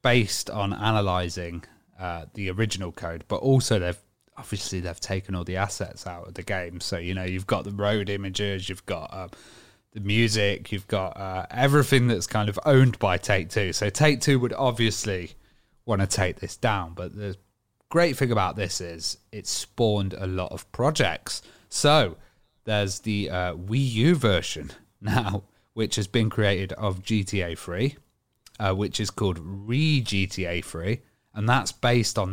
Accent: British